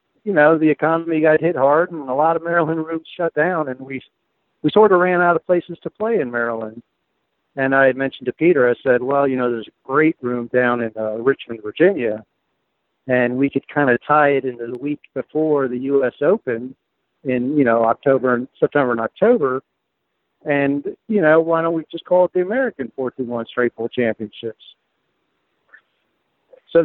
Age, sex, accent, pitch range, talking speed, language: 60-79, male, American, 125-160 Hz, 190 wpm, English